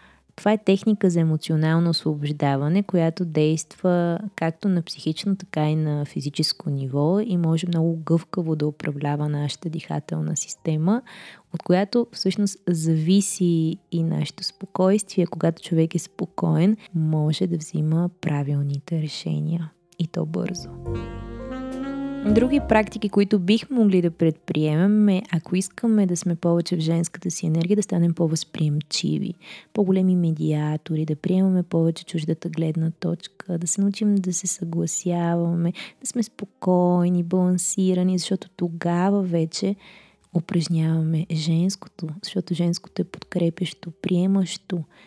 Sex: female